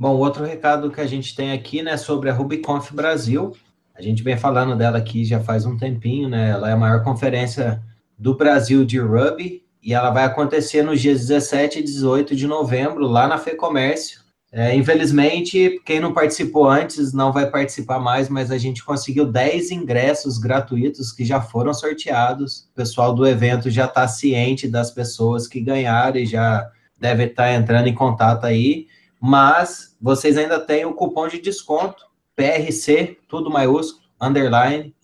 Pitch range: 120-145 Hz